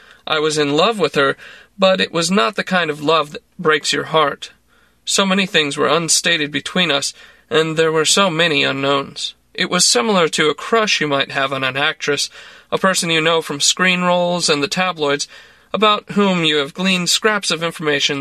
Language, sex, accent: English, male, American